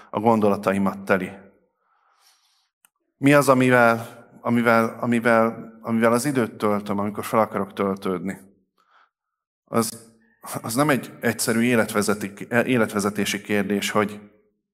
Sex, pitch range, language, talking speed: male, 105-120 Hz, Hungarian, 100 wpm